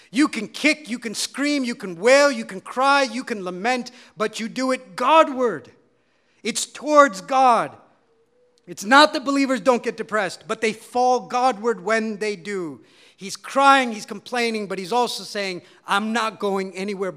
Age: 50-69